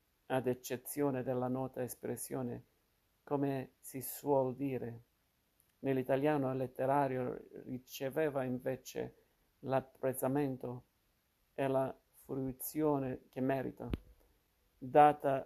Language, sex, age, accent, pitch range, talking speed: Italian, male, 50-69, native, 125-135 Hz, 80 wpm